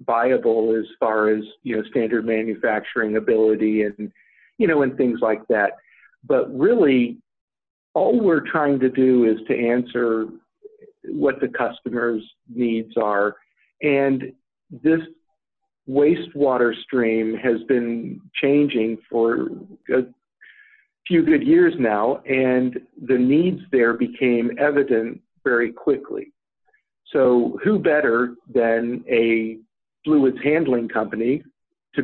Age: 50-69